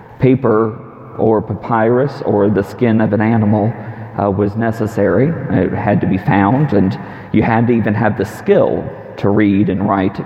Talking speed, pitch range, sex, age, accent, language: 170 wpm, 105-130 Hz, male, 40-59, American, English